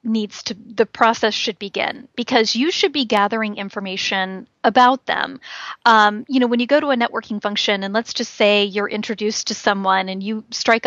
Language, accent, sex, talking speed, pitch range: English, American, female, 195 wpm, 200-240 Hz